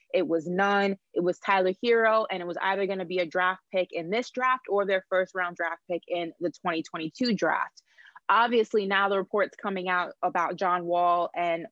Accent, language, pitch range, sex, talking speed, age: American, English, 175-200 Hz, female, 205 wpm, 20-39